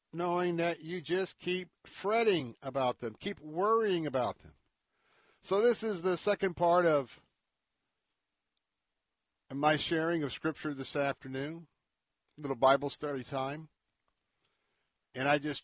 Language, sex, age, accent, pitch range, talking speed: English, male, 60-79, American, 135-160 Hz, 125 wpm